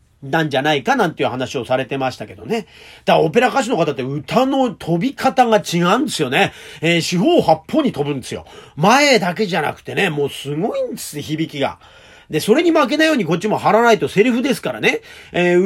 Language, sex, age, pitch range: Japanese, male, 40-59, 150-235 Hz